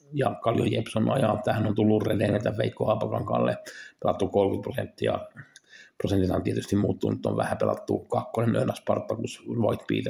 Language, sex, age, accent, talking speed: Finnish, male, 50-69, native, 145 wpm